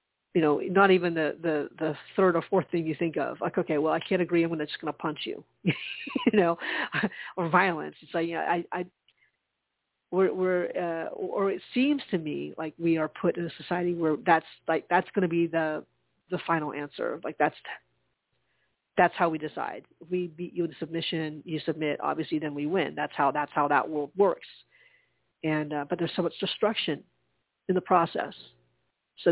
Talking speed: 200 wpm